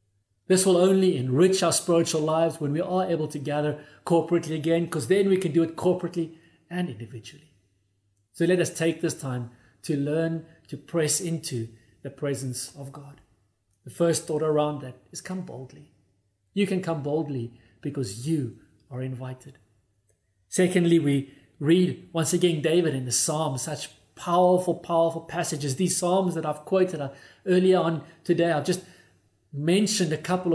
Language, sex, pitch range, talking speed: English, male, 130-170 Hz, 160 wpm